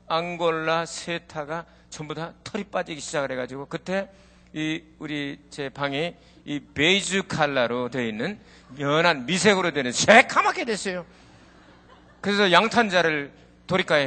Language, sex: Korean, male